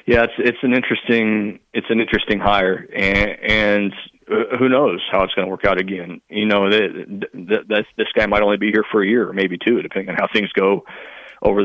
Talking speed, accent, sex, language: 210 wpm, American, male, English